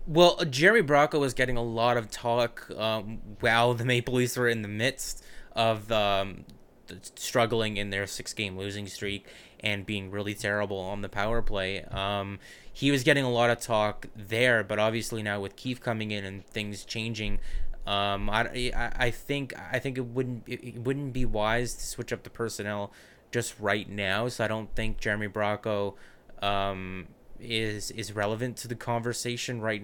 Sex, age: male, 20-39